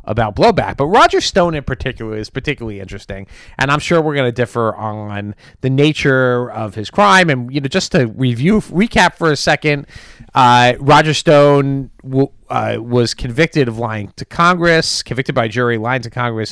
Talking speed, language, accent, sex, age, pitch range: 180 wpm, English, American, male, 30-49, 110-150 Hz